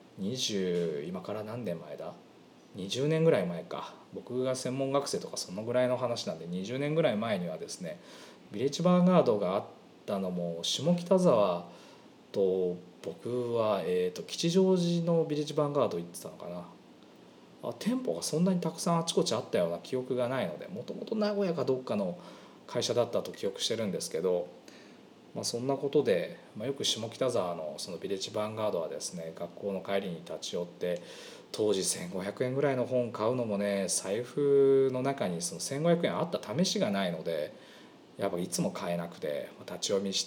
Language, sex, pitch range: Japanese, male, 100-150 Hz